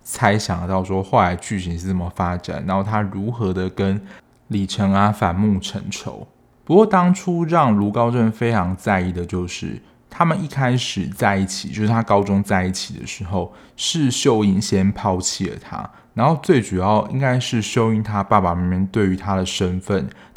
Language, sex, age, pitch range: Chinese, male, 20-39, 95-110 Hz